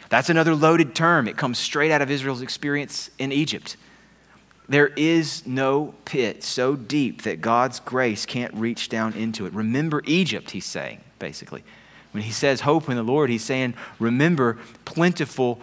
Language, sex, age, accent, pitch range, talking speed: English, male, 30-49, American, 95-135 Hz, 165 wpm